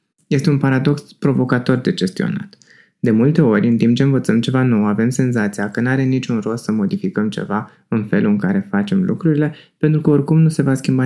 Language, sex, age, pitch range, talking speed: Romanian, male, 20-39, 115-165 Hz, 205 wpm